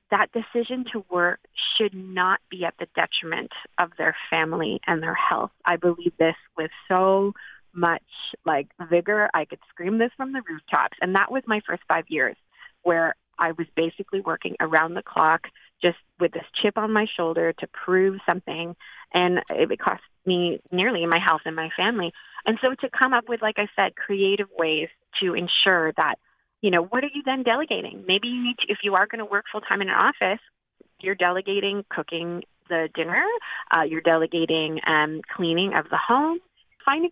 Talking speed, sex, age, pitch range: 190 wpm, female, 30-49, 170-230 Hz